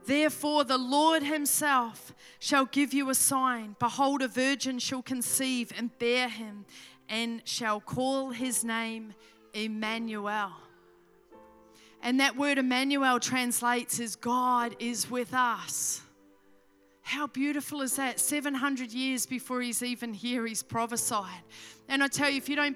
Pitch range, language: 240-280 Hz, English